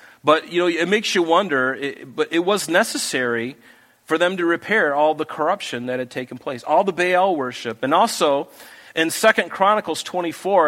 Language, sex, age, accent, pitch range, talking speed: English, male, 40-59, American, 130-170 Hz, 185 wpm